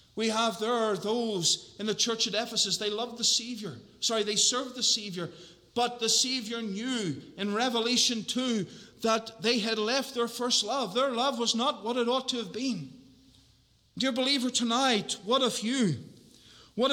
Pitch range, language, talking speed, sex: 200-245 Hz, English, 175 wpm, male